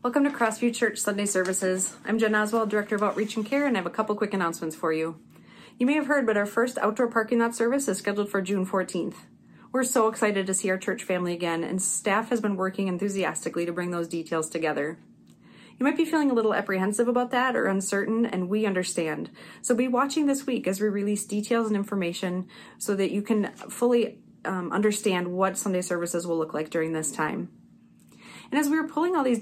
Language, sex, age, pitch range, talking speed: English, female, 30-49, 180-230 Hz, 220 wpm